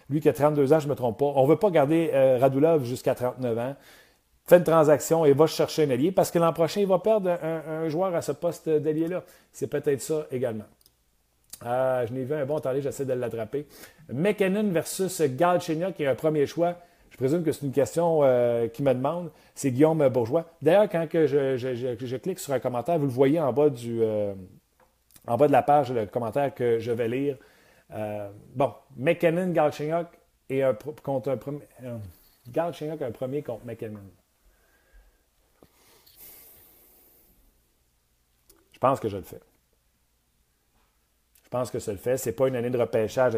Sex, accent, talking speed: male, Canadian, 195 wpm